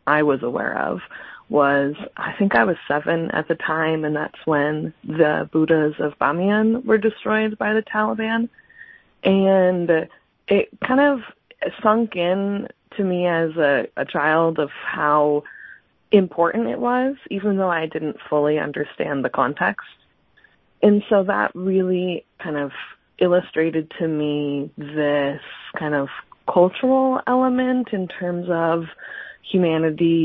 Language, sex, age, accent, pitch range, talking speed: English, female, 20-39, American, 150-190 Hz, 135 wpm